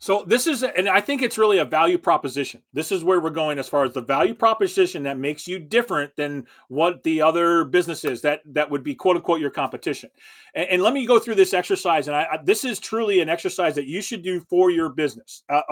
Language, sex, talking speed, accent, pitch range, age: English, male, 240 wpm, American, 155-200 Hz, 30-49